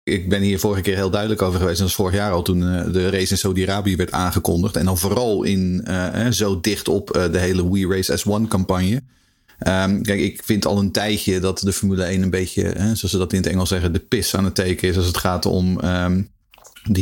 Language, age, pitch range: Dutch, 40-59, 95-110 Hz